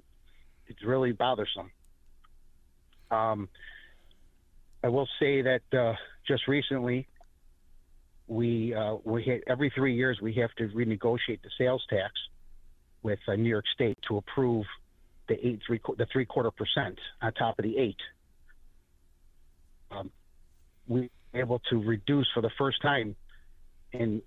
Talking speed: 135 wpm